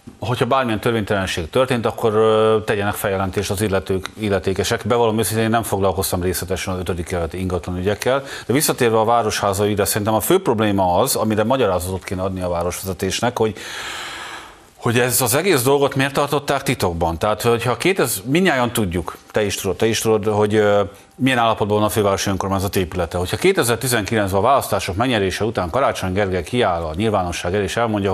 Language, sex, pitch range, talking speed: Hungarian, male, 100-120 Hz, 165 wpm